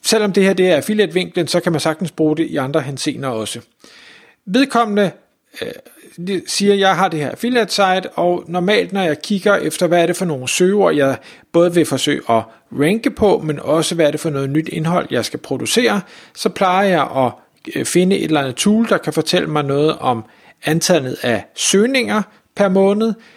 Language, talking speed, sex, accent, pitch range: Danish, 200 wpm, male, native, 150-200 Hz